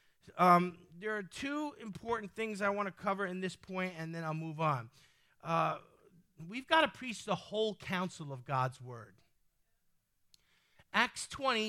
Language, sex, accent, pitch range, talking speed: English, male, American, 180-245 Hz, 160 wpm